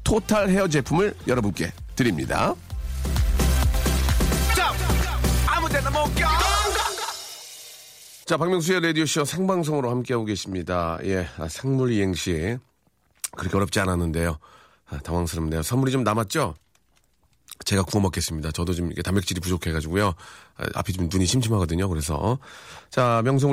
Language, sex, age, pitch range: Korean, male, 40-59, 85-125 Hz